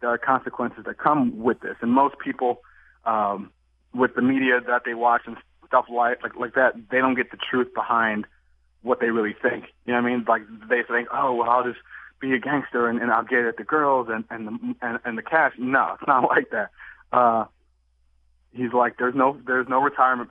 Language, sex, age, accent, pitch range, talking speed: English, male, 30-49, American, 105-125 Hz, 220 wpm